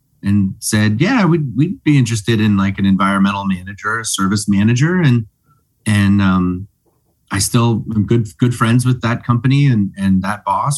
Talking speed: 175 wpm